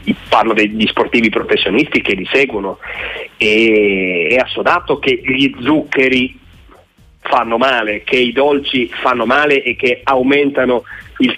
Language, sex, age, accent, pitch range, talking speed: Italian, male, 40-59, native, 110-140 Hz, 125 wpm